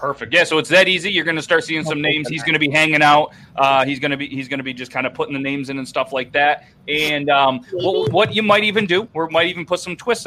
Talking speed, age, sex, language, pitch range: 310 wpm, 30-49, male, English, 140-175 Hz